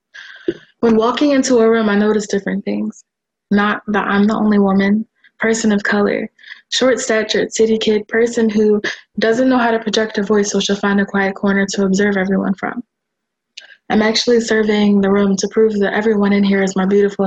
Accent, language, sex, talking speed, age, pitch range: American, English, female, 190 wpm, 20-39, 205-230 Hz